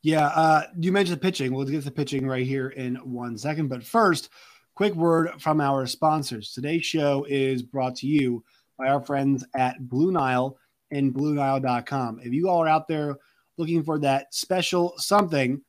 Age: 20-39